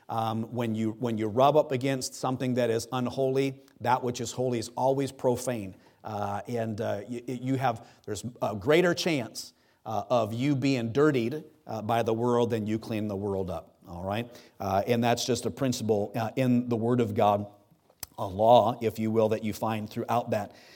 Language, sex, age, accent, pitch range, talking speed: English, male, 40-59, American, 115-140 Hz, 195 wpm